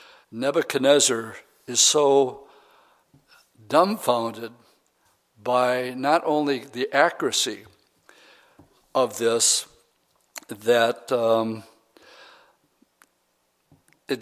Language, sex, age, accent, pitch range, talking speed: English, male, 60-79, American, 120-140 Hz, 60 wpm